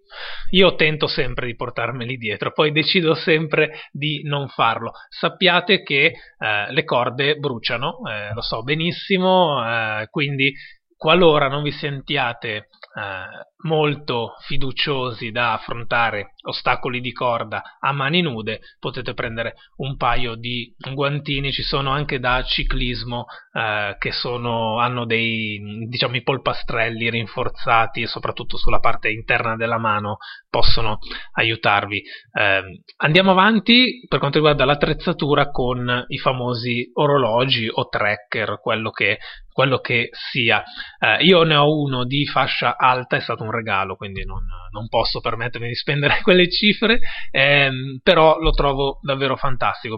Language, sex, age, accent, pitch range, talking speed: Italian, male, 30-49, native, 115-150 Hz, 135 wpm